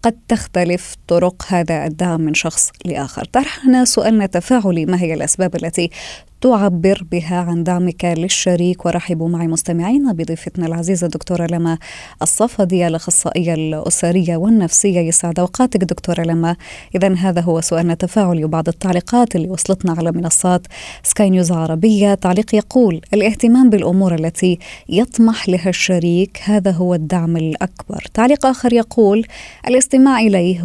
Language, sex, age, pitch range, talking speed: Arabic, female, 20-39, 170-210 Hz, 130 wpm